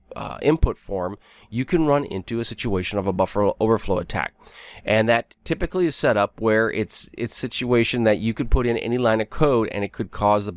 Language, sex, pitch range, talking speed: English, male, 100-120 Hz, 215 wpm